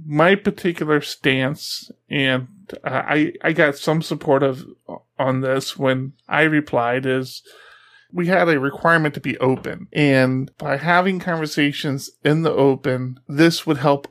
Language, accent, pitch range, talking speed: English, American, 135-160 Hz, 145 wpm